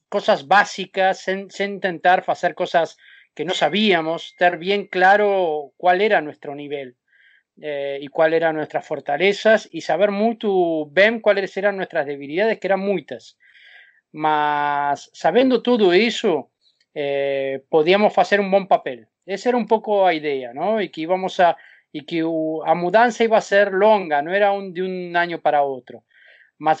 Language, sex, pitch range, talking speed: Portuguese, male, 155-200 Hz, 160 wpm